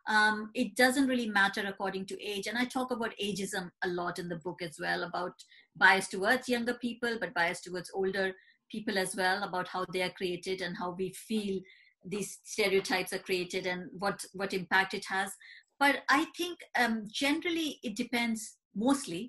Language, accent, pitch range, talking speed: English, Indian, 190-245 Hz, 185 wpm